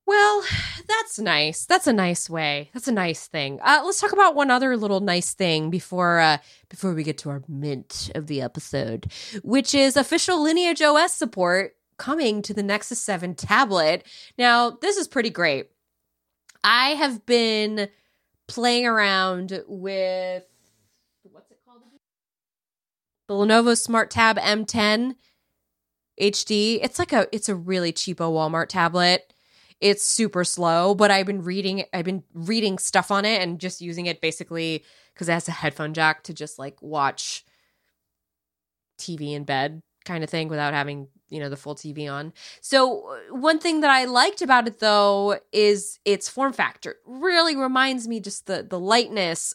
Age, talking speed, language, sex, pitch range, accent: 20-39, 160 wpm, English, female, 160-240 Hz, American